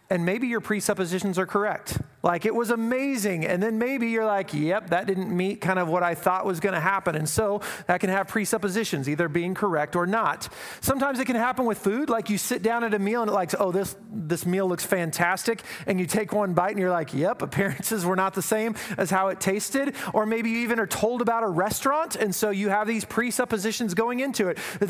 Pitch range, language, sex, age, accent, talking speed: 175-220 Hz, English, male, 30-49, American, 235 wpm